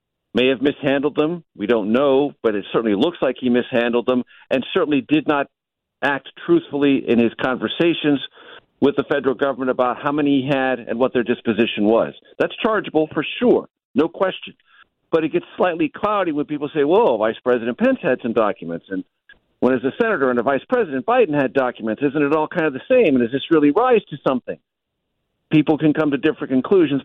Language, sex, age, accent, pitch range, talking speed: English, male, 50-69, American, 125-175 Hz, 200 wpm